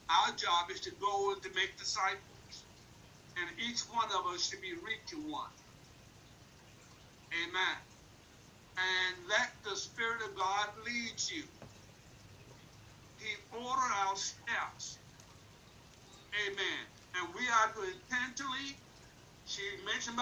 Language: English